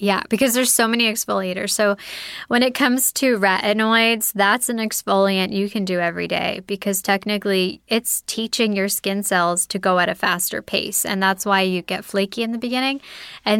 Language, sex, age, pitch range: English, female, 10-29, 190-220 Hz